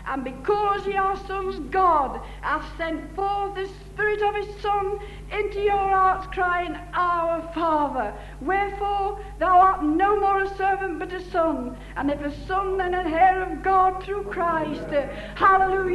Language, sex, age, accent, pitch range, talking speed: English, female, 60-79, British, 295-380 Hz, 160 wpm